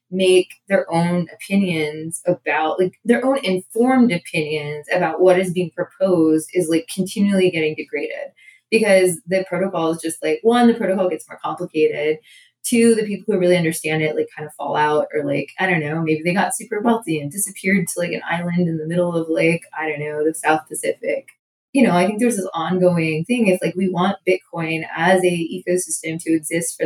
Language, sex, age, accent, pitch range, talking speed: English, female, 20-39, American, 160-195 Hz, 200 wpm